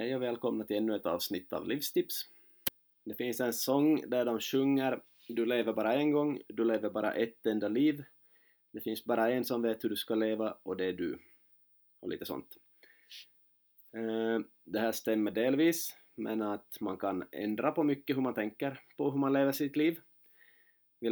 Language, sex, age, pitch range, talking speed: Swedish, male, 20-39, 110-135 Hz, 185 wpm